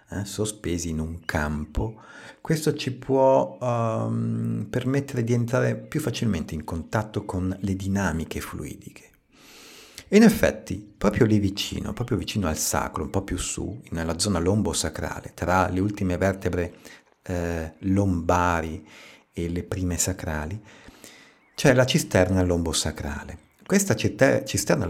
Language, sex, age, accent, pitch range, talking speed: Italian, male, 50-69, native, 80-115 Hz, 130 wpm